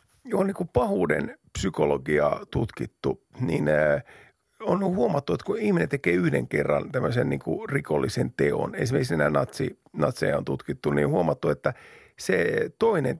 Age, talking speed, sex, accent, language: 50-69, 145 wpm, male, native, Finnish